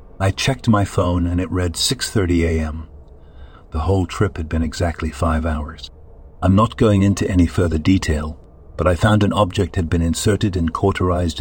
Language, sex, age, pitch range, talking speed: English, male, 60-79, 80-95 Hz, 180 wpm